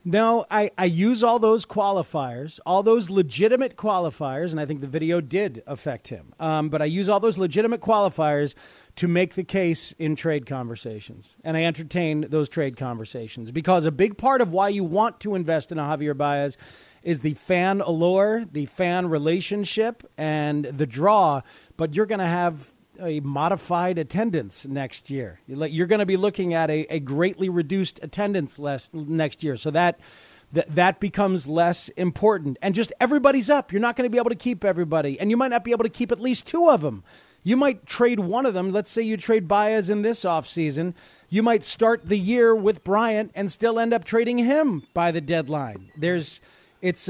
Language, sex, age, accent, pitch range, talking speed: English, male, 40-59, American, 155-215 Hz, 195 wpm